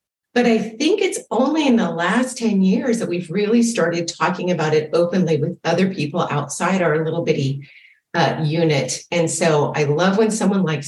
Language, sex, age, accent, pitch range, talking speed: English, female, 40-59, American, 160-210 Hz, 190 wpm